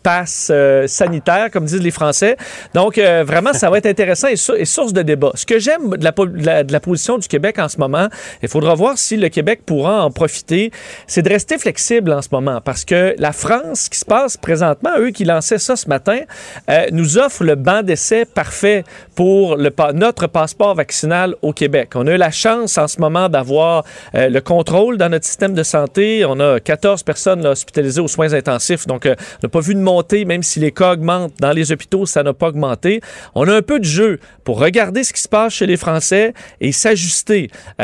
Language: French